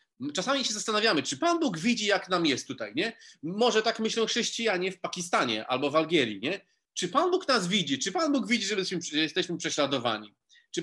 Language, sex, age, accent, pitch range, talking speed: Polish, male, 30-49, native, 145-220 Hz, 195 wpm